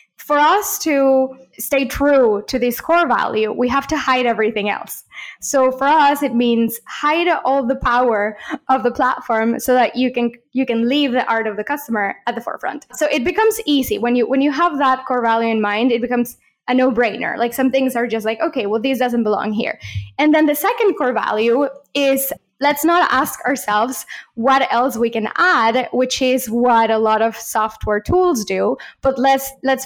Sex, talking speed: female, 200 wpm